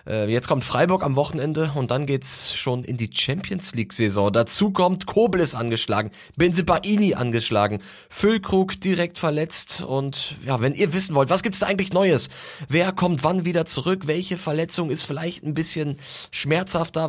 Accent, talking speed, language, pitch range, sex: German, 160 wpm, German, 125-175 Hz, male